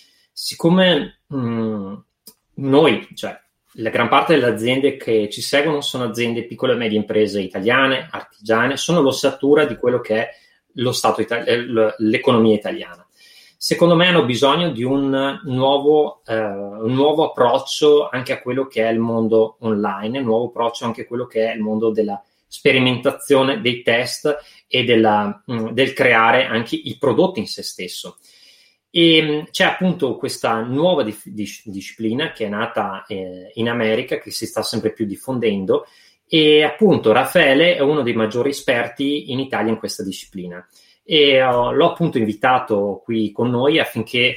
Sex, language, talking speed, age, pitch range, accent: male, Italian, 155 wpm, 30-49, 110-140 Hz, native